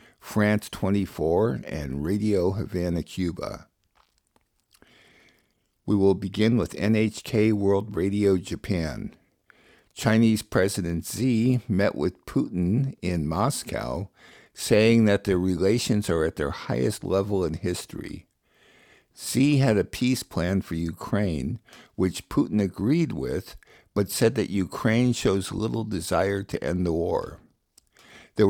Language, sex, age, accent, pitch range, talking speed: English, male, 60-79, American, 90-110 Hz, 120 wpm